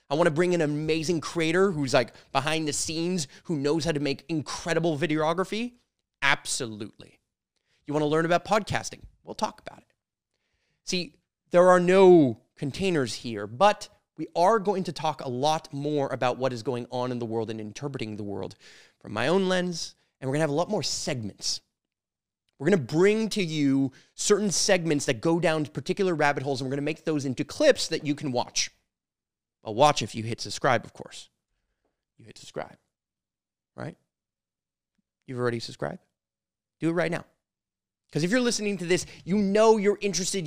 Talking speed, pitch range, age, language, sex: 180 wpm, 130-185 Hz, 30-49, English, male